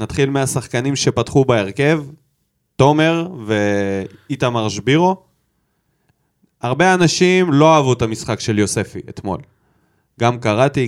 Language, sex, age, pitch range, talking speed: Hebrew, male, 20-39, 125-180 Hz, 100 wpm